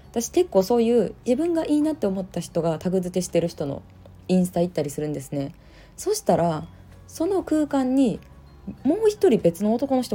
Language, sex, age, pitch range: Japanese, female, 20-39, 150-235 Hz